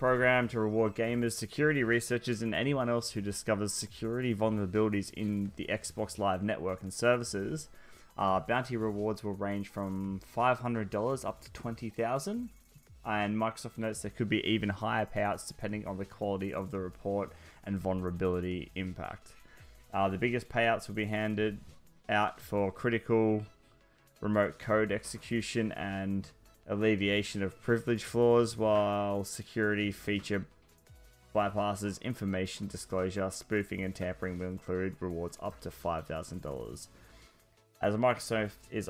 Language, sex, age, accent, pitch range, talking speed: English, male, 10-29, Australian, 95-110 Hz, 135 wpm